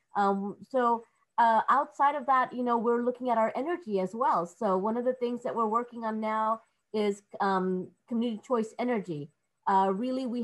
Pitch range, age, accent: 195-235 Hz, 30-49, American